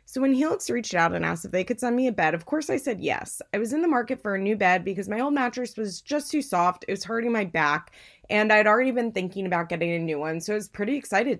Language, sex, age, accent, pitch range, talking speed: English, female, 20-39, American, 180-255 Hz, 295 wpm